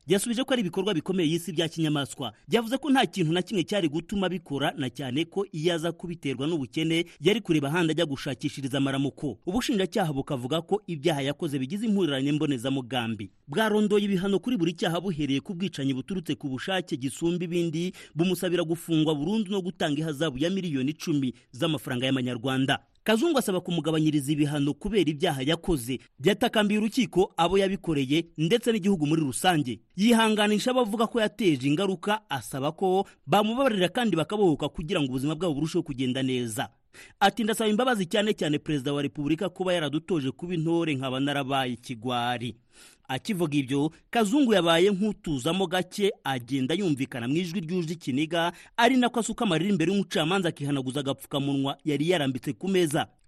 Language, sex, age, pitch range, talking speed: Indonesian, male, 30-49, 140-195 Hz, 150 wpm